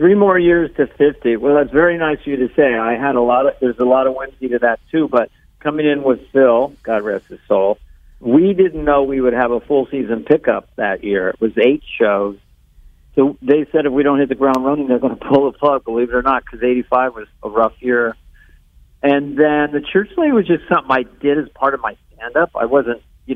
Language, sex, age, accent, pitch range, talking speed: English, male, 50-69, American, 120-145 Hz, 240 wpm